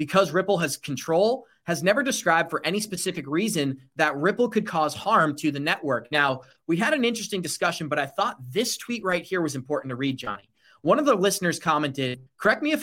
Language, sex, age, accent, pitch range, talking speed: English, male, 30-49, American, 145-200 Hz, 210 wpm